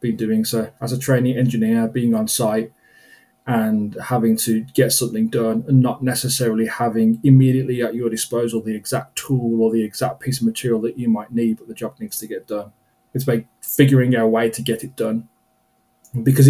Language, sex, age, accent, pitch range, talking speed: English, male, 20-39, British, 110-130 Hz, 200 wpm